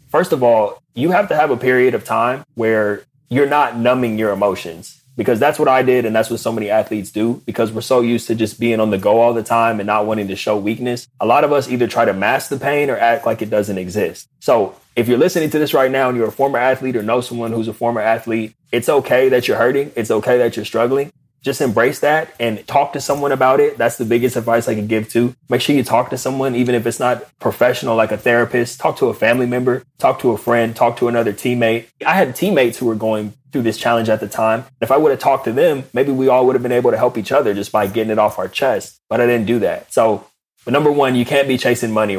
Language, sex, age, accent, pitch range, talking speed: English, male, 20-39, American, 110-125 Hz, 270 wpm